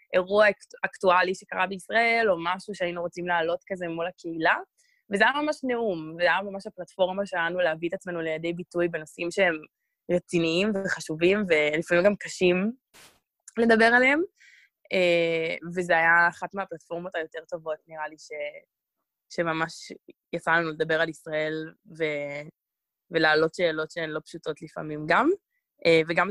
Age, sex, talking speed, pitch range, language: 20-39, female, 135 wpm, 165-220 Hz, Hebrew